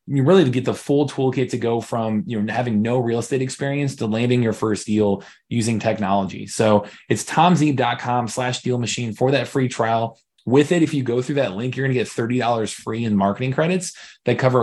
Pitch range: 100-125 Hz